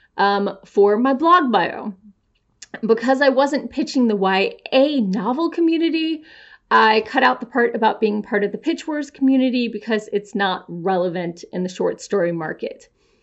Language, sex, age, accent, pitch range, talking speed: English, female, 30-49, American, 210-320 Hz, 160 wpm